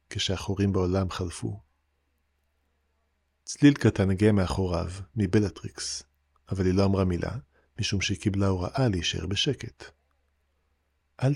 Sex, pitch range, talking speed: male, 95-120 Hz, 105 wpm